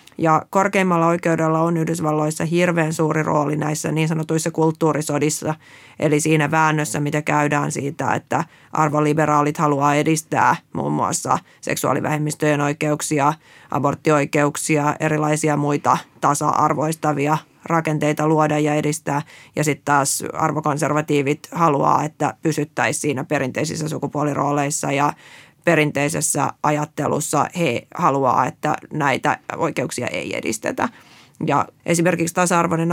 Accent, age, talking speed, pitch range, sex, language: native, 30-49, 105 wpm, 145-160 Hz, female, Finnish